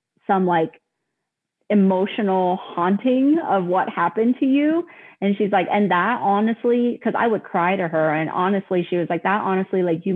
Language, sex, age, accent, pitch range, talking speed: English, female, 30-49, American, 180-225 Hz, 175 wpm